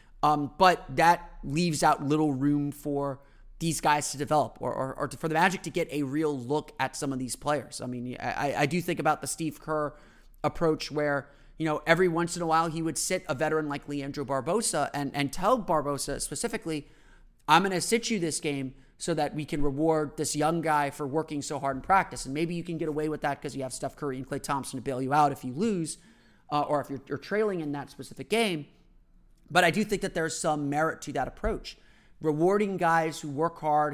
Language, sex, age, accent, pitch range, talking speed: English, male, 30-49, American, 140-165 Hz, 230 wpm